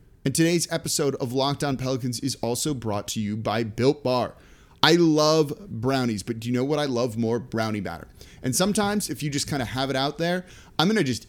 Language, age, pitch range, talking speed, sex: English, 30-49, 115-155 Hz, 225 wpm, male